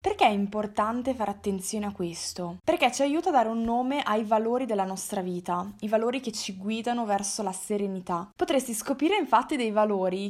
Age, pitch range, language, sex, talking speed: 20-39, 200-245 Hz, Italian, female, 185 wpm